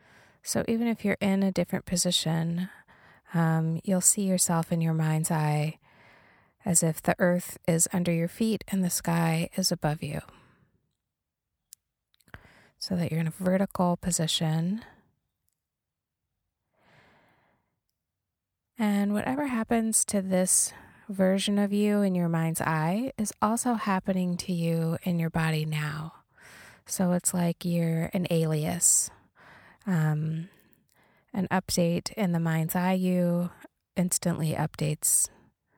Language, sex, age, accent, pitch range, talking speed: English, female, 20-39, American, 160-190 Hz, 125 wpm